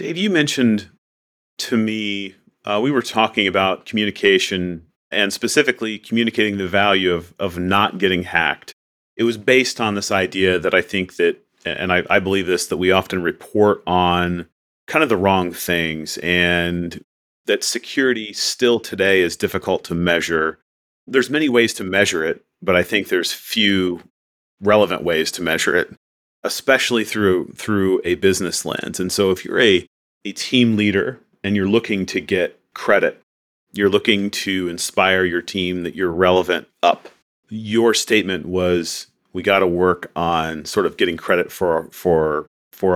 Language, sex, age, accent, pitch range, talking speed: English, male, 40-59, American, 85-105 Hz, 160 wpm